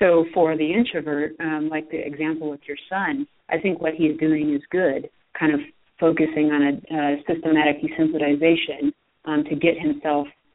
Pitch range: 150-170 Hz